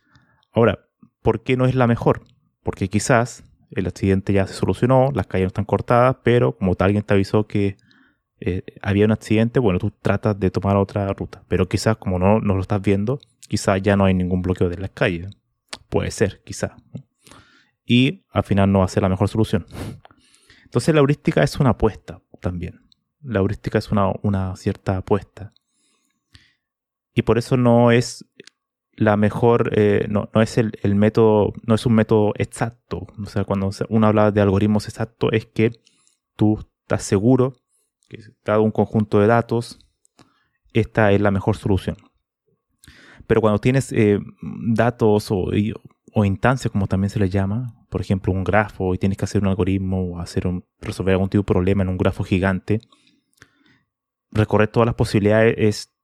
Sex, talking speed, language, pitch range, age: male, 175 wpm, Spanish, 100-115 Hz, 20-39